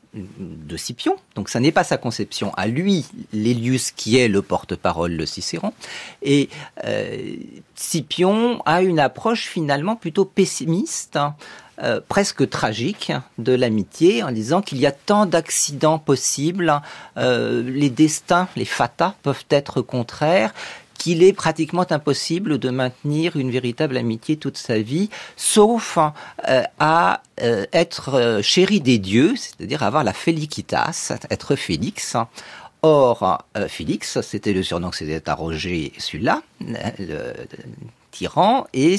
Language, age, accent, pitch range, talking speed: French, 40-59, French, 110-170 Hz, 140 wpm